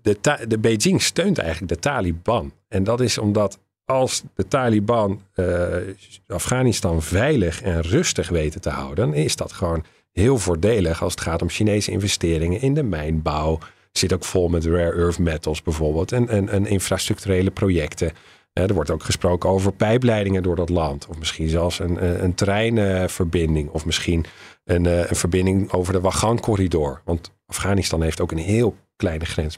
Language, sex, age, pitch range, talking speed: Dutch, male, 40-59, 85-115 Hz, 170 wpm